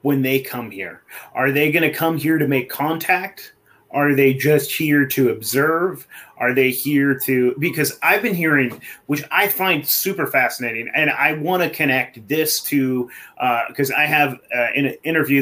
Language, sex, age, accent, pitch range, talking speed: English, male, 30-49, American, 120-145 Hz, 180 wpm